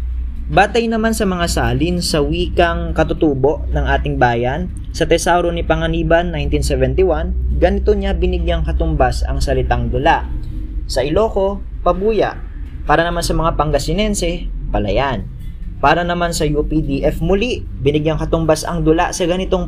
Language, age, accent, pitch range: Filipino, 20-39, native, 115-165 Hz